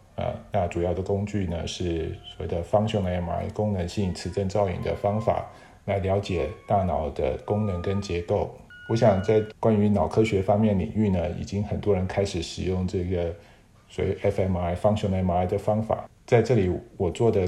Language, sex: Chinese, male